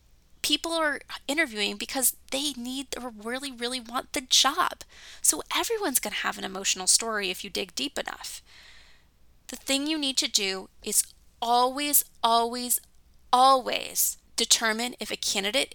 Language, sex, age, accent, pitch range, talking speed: English, female, 10-29, American, 195-260 Hz, 150 wpm